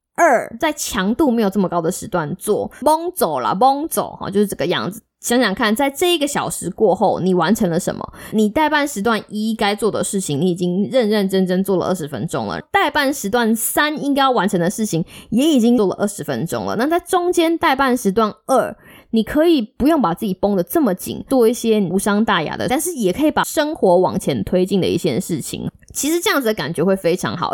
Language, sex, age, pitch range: Chinese, female, 20-39, 190-275 Hz